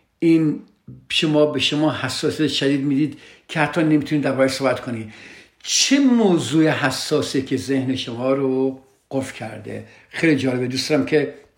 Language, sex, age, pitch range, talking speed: Persian, male, 60-79, 130-185 Hz, 130 wpm